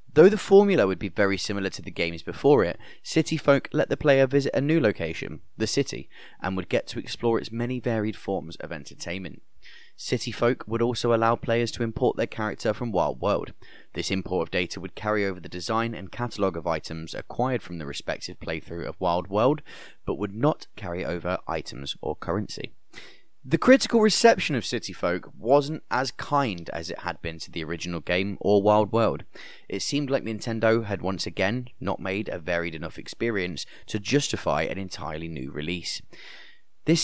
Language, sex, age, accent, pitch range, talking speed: English, male, 20-39, British, 90-140 Hz, 190 wpm